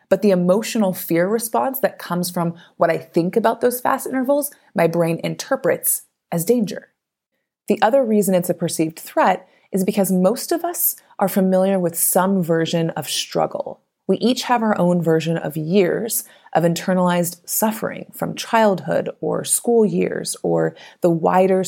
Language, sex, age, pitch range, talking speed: English, female, 30-49, 170-225 Hz, 160 wpm